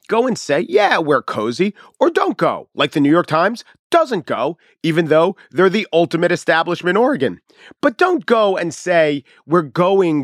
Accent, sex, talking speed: American, male, 175 wpm